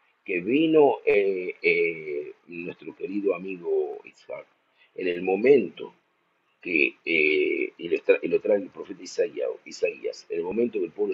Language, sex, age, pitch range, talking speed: Spanish, male, 50-69, 365-425 Hz, 155 wpm